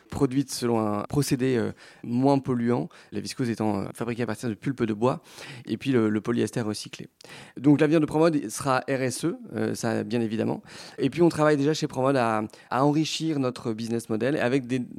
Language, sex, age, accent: French, male, 30-49, French